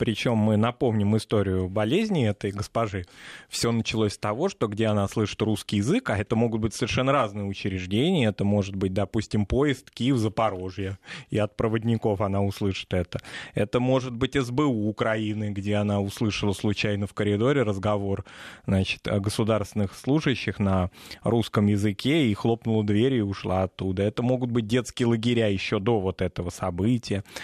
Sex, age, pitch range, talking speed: male, 20-39, 100-125 Hz, 155 wpm